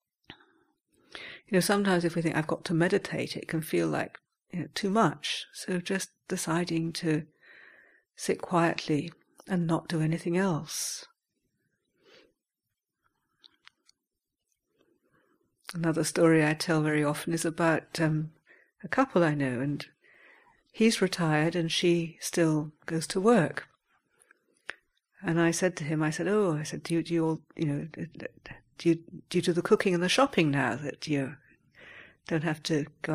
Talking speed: 155 wpm